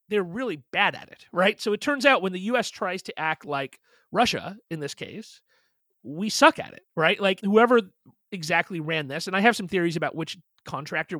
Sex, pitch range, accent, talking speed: male, 155-205 Hz, American, 210 wpm